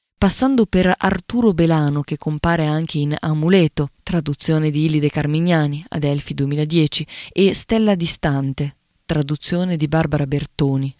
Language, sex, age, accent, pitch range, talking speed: Italian, female, 20-39, native, 150-180 Hz, 125 wpm